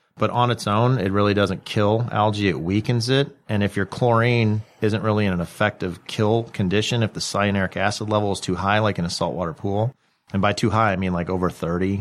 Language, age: English, 40-59